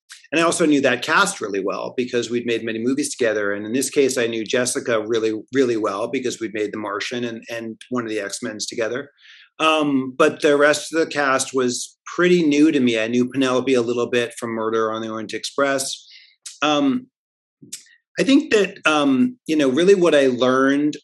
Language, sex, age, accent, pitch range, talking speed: Spanish, male, 40-59, American, 120-145 Hz, 205 wpm